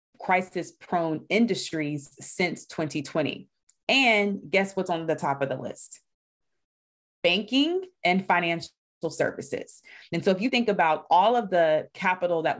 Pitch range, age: 155-185 Hz, 30-49